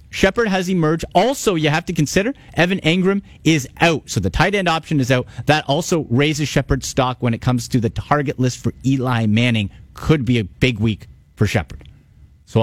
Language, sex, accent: English, male, American